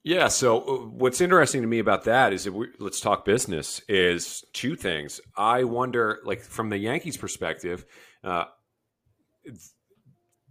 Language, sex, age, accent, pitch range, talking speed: English, male, 40-59, American, 90-115 Hz, 145 wpm